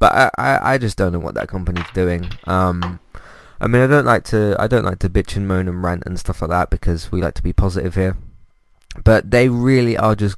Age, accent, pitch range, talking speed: 20-39, British, 90-110 Hz, 255 wpm